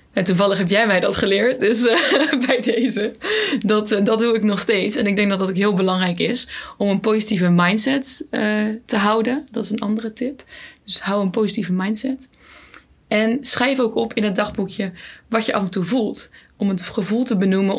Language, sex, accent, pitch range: Dutch, female, Dutch, 195-230 Hz